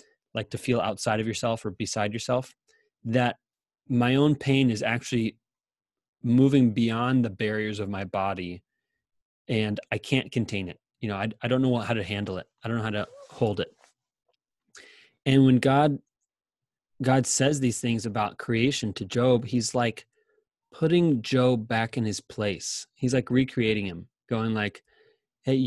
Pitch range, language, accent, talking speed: 115-140 Hz, English, American, 165 wpm